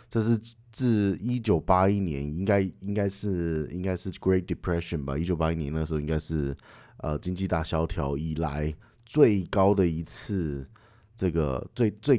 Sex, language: male, Chinese